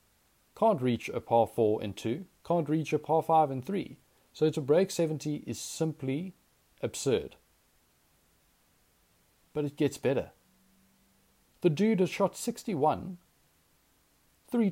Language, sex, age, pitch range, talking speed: English, male, 40-59, 115-185 Hz, 125 wpm